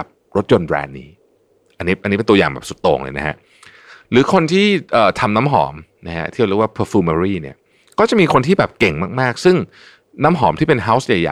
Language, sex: Thai, male